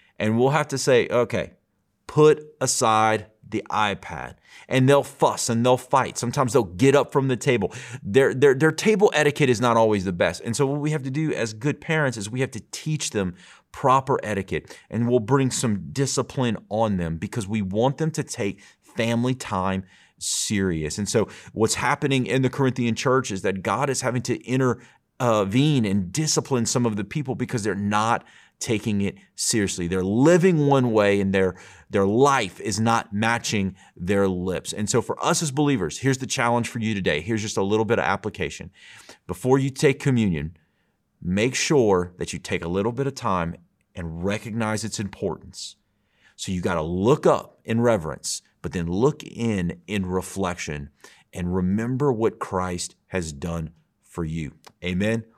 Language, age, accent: English, 30-49, American